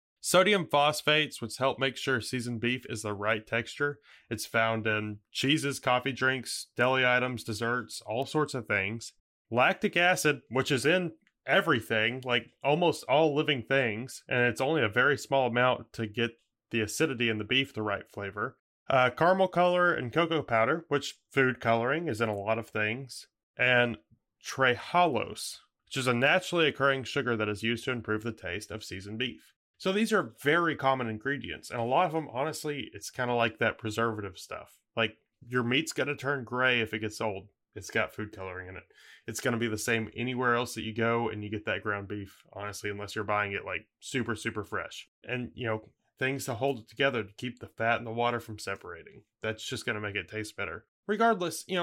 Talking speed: 205 wpm